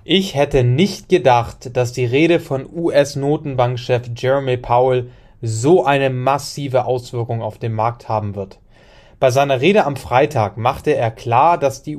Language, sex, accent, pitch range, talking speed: English, male, German, 120-145 Hz, 150 wpm